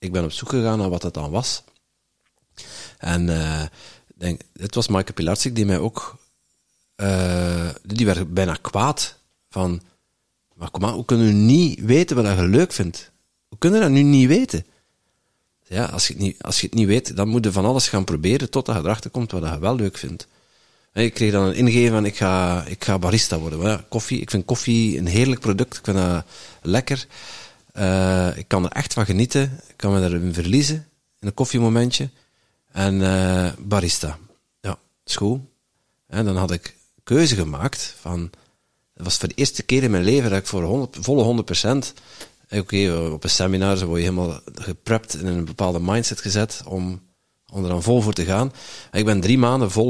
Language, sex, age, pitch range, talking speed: Dutch, male, 50-69, 90-120 Hz, 200 wpm